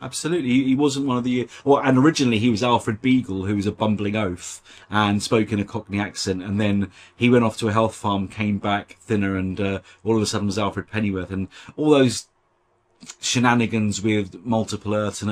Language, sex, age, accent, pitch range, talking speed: English, male, 30-49, British, 95-120 Hz, 210 wpm